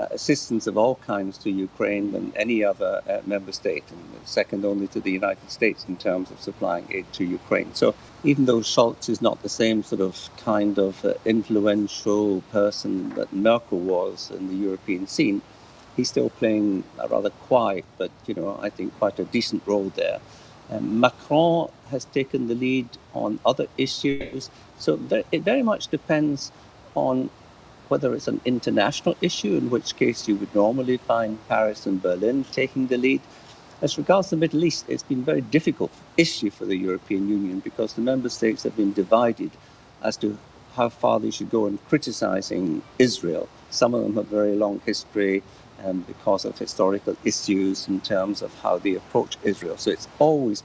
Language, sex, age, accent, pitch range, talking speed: English, male, 50-69, British, 100-130 Hz, 180 wpm